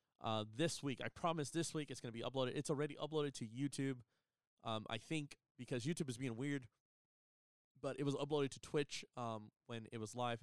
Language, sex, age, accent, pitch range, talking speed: English, male, 20-39, American, 105-130 Hz, 200 wpm